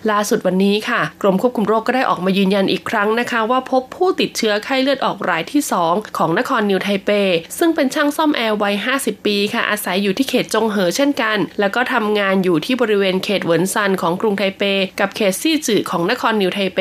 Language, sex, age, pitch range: Thai, female, 20-39, 195-255 Hz